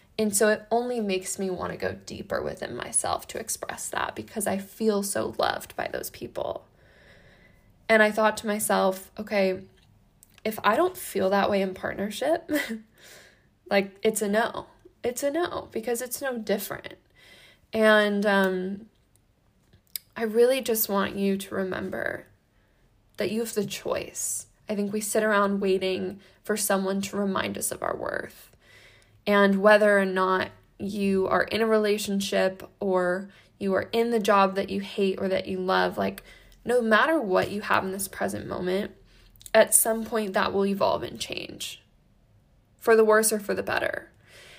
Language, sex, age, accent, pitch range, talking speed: English, female, 10-29, American, 190-220 Hz, 165 wpm